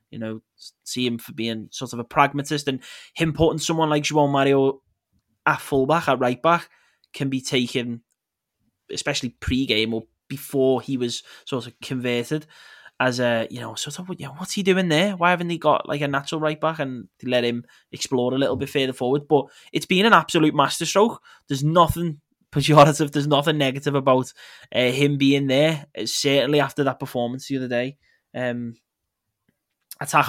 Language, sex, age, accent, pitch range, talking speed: English, male, 20-39, British, 130-150 Hz, 185 wpm